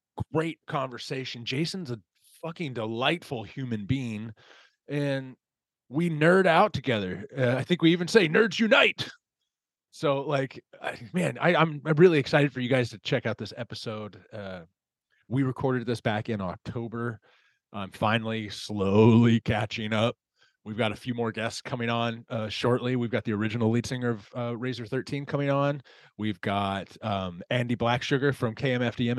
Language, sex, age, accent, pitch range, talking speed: English, male, 30-49, American, 110-150 Hz, 165 wpm